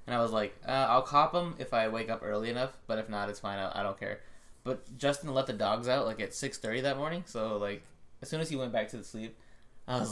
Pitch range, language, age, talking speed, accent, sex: 105-130 Hz, English, 20-39, 275 wpm, American, male